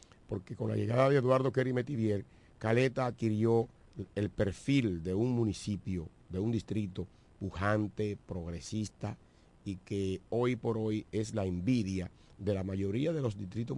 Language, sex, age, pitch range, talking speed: Spanish, male, 50-69, 95-120 Hz, 150 wpm